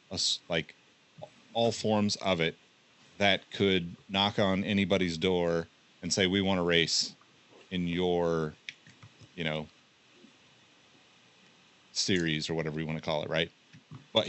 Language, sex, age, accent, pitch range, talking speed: English, male, 30-49, American, 85-110 Hz, 130 wpm